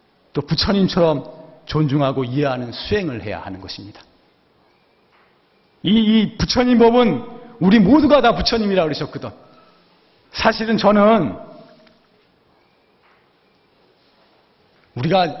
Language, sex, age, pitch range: Korean, male, 40-59, 130-210 Hz